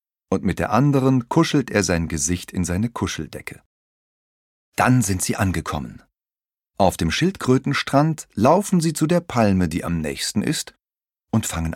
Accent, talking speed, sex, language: German, 150 wpm, male, German